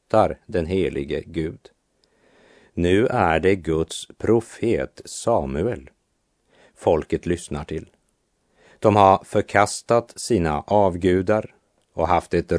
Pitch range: 85-110 Hz